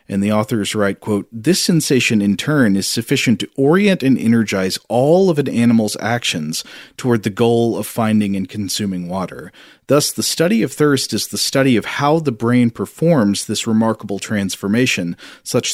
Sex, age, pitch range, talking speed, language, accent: male, 40-59, 100-130 Hz, 170 wpm, English, American